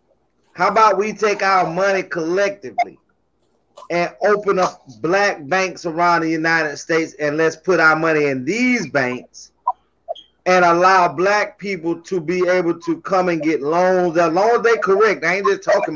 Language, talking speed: English, 170 wpm